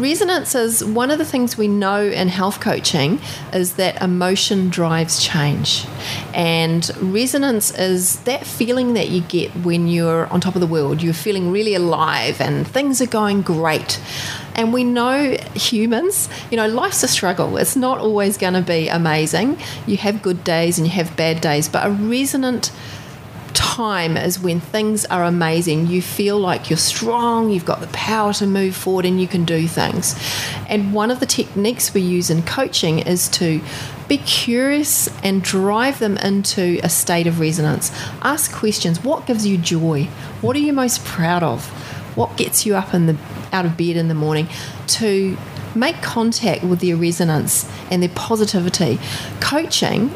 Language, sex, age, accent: English, female, 30-49, Australian